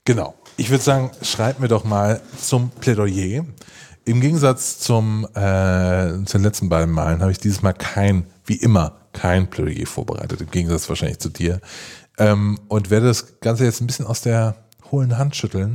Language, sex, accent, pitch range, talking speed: German, male, German, 100-130 Hz, 170 wpm